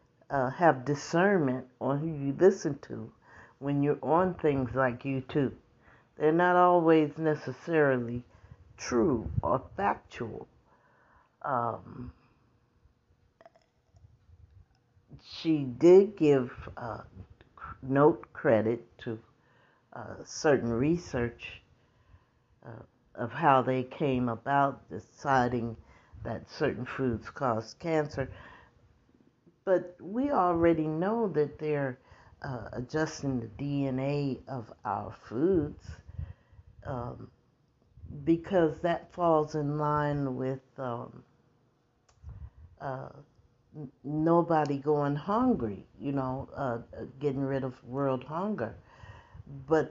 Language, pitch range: English, 120-160 Hz